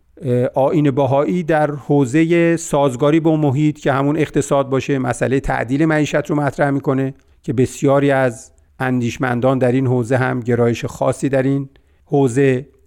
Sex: male